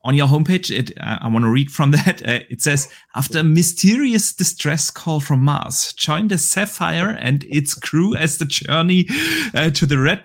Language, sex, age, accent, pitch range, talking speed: English, male, 30-49, German, 125-165 Hz, 200 wpm